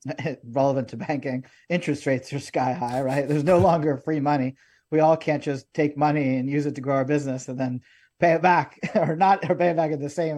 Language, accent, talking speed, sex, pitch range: English, American, 230 wpm, male, 135-170 Hz